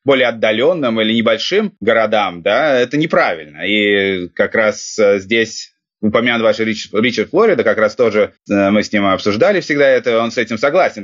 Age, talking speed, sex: 20-39, 165 wpm, male